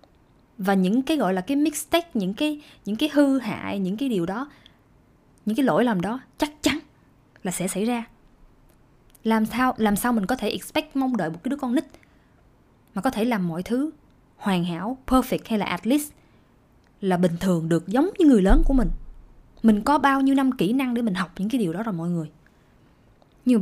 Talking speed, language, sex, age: 215 wpm, Vietnamese, female, 20-39